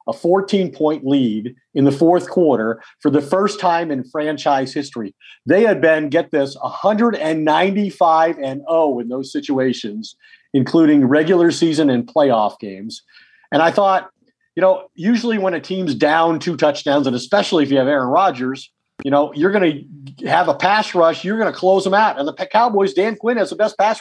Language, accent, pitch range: English, American, 140-190 Hz